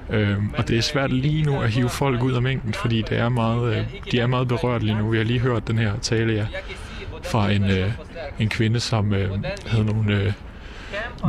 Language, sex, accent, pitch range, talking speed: Danish, male, native, 105-125 Hz, 225 wpm